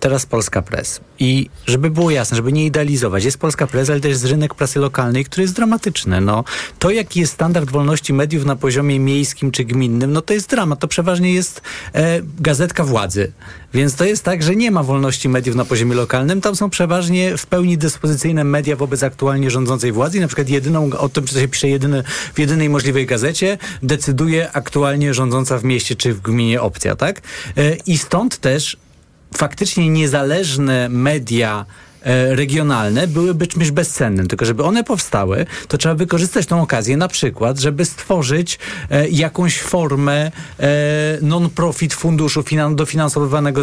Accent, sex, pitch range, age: native, male, 135-165 Hz, 40-59